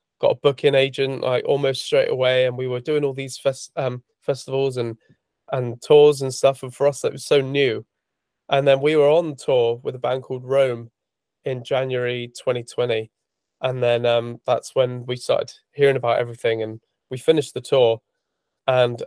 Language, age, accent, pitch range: English, 20-39, British, 120-145 Hz